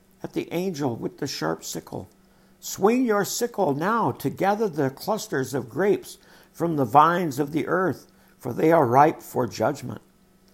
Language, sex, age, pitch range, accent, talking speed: English, male, 60-79, 125-185 Hz, American, 165 wpm